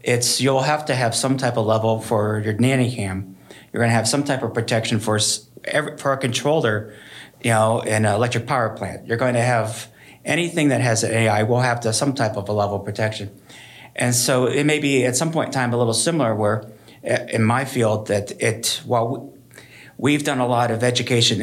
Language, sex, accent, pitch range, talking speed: English, male, American, 110-125 Hz, 220 wpm